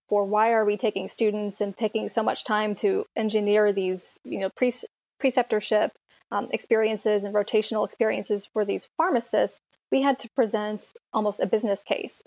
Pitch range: 205-225 Hz